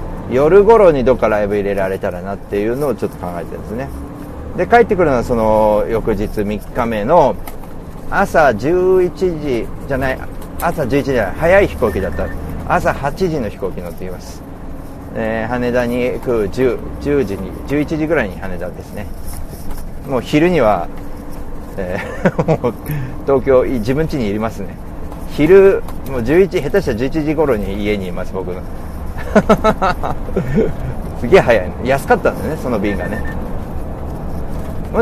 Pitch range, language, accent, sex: 90-135 Hz, Japanese, native, male